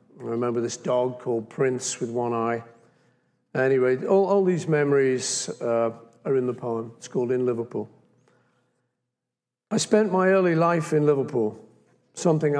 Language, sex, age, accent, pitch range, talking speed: English, male, 50-69, British, 125-160 Hz, 150 wpm